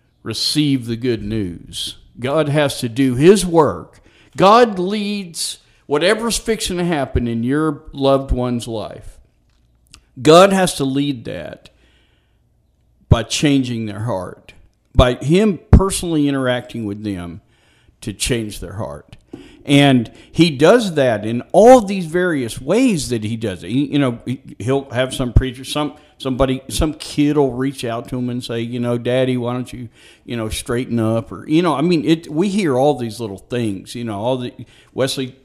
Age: 50-69